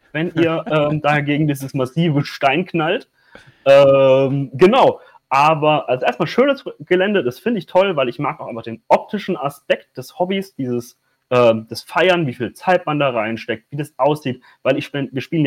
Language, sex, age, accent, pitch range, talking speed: German, male, 30-49, German, 130-170 Hz, 180 wpm